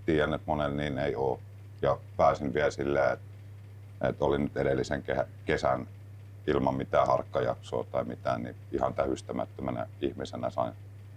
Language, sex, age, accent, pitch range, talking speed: Finnish, male, 50-69, native, 95-100 Hz, 145 wpm